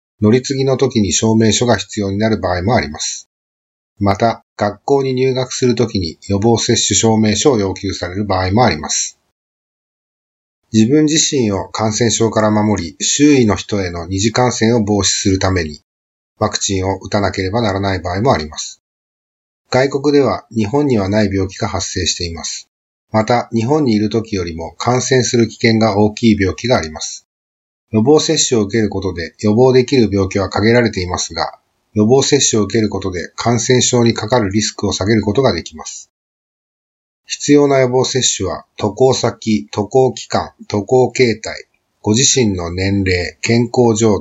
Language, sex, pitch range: Japanese, male, 95-120 Hz